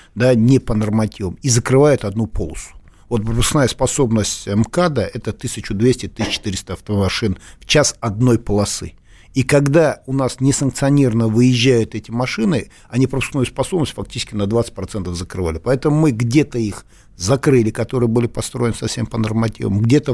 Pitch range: 95-125 Hz